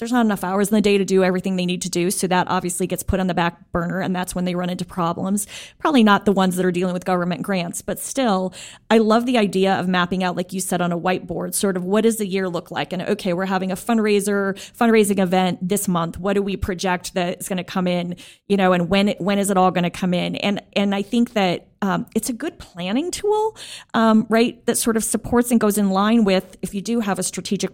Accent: American